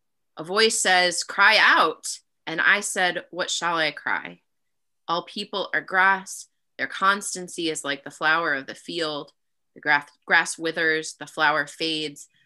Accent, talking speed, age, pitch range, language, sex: American, 155 wpm, 20-39, 160-205 Hz, English, female